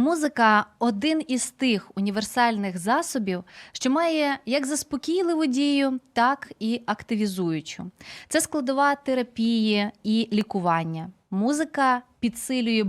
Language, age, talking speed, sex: Ukrainian, 20-39, 100 wpm, female